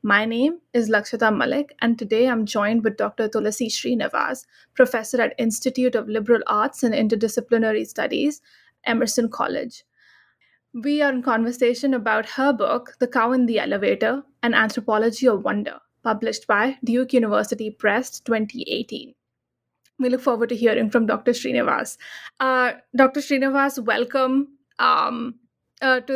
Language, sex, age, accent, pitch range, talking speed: English, female, 20-39, Indian, 230-265 Hz, 140 wpm